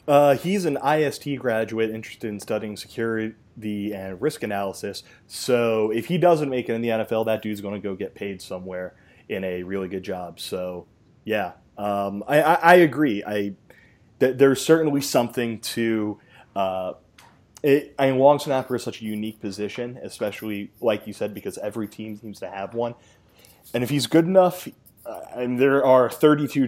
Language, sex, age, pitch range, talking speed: English, male, 20-39, 105-140 Hz, 180 wpm